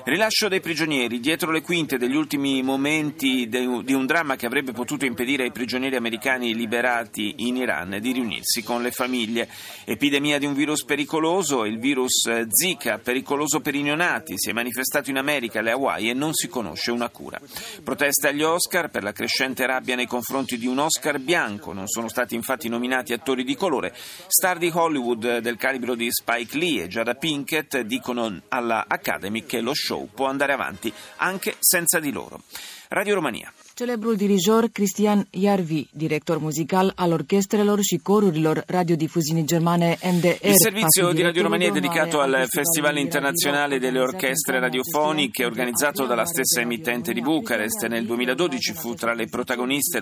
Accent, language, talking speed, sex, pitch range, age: native, Italian, 150 wpm, male, 120-160 Hz, 40-59